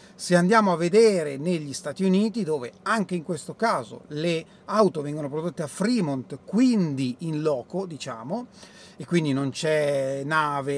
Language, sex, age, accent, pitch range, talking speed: Italian, male, 30-49, native, 150-200 Hz, 150 wpm